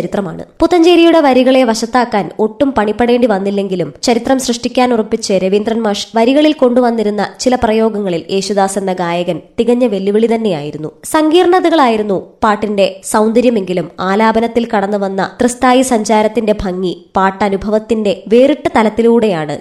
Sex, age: male, 20-39